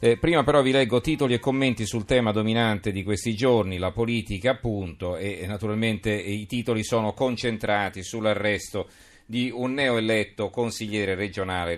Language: Italian